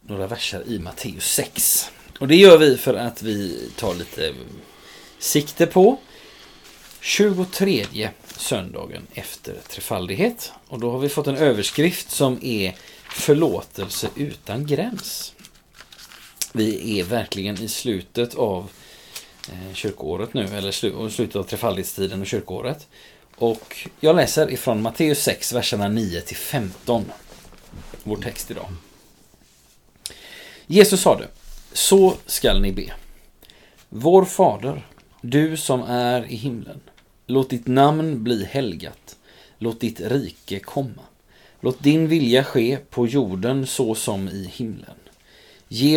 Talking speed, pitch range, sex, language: 120 wpm, 105-145 Hz, male, Swedish